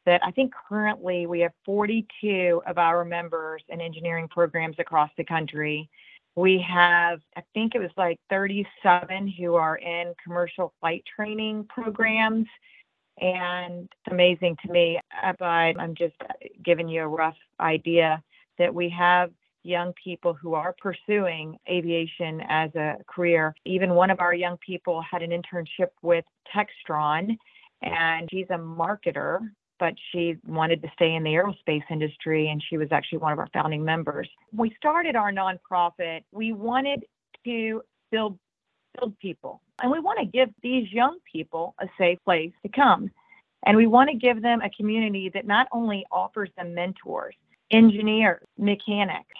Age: 40-59